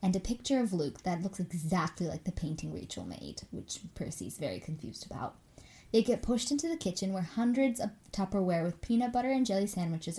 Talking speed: 200 wpm